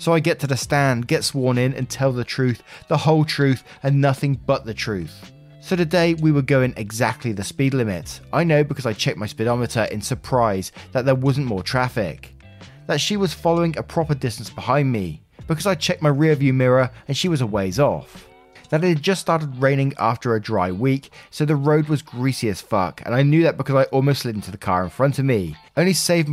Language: English